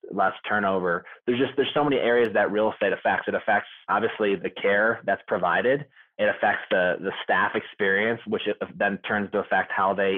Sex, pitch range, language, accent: male, 100-115 Hz, English, American